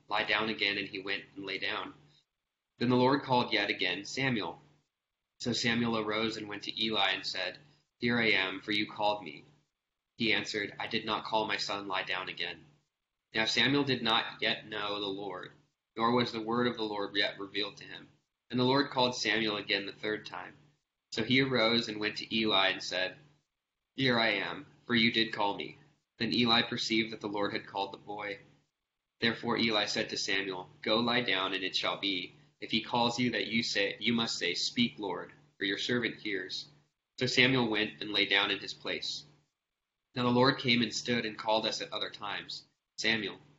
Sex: male